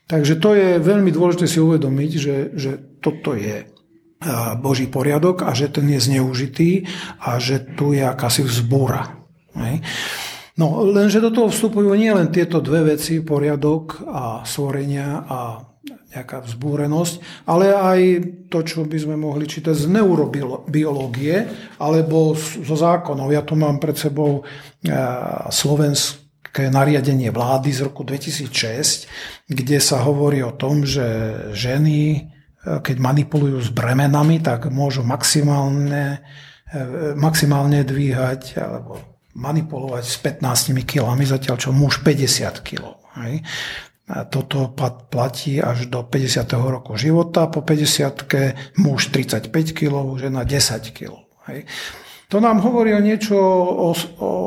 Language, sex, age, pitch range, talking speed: Slovak, male, 50-69, 135-160 Hz, 120 wpm